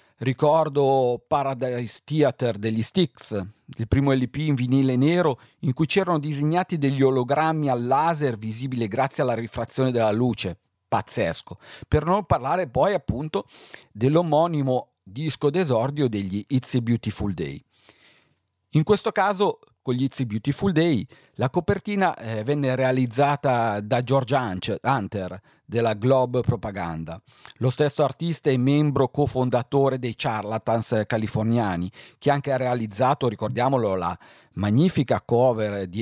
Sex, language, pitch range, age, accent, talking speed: male, Italian, 115-145 Hz, 40-59, native, 125 wpm